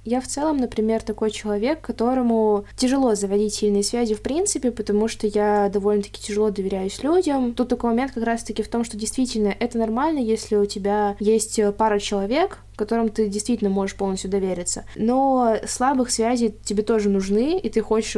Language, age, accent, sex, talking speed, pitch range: Russian, 20-39, native, female, 170 wpm, 205-235 Hz